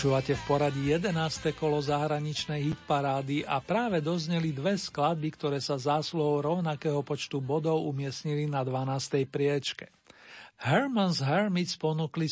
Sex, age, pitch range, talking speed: male, 50-69, 145-165 Hz, 120 wpm